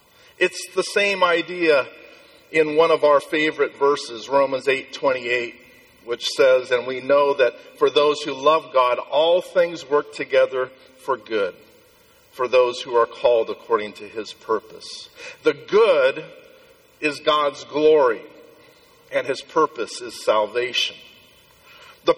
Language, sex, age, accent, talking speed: English, male, 50-69, American, 140 wpm